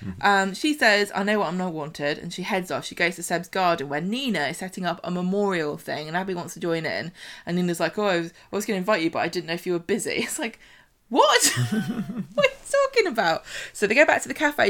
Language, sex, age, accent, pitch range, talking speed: English, female, 20-39, British, 170-230 Hz, 265 wpm